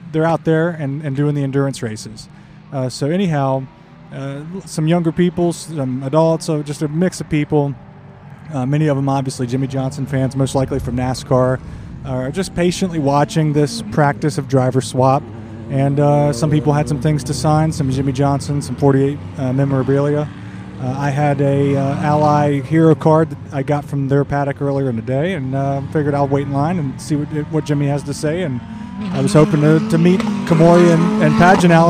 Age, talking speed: 30-49, 200 wpm